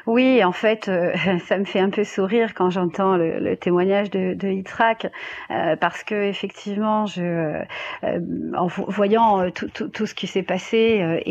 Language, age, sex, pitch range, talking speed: French, 40-59, female, 180-215 Hz, 180 wpm